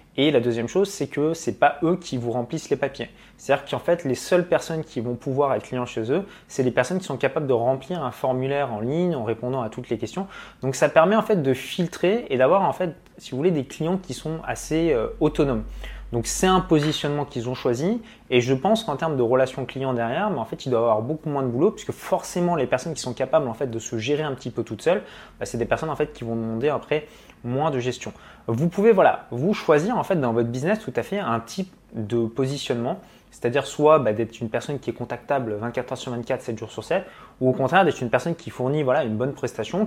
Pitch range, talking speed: 120-160 Hz, 255 wpm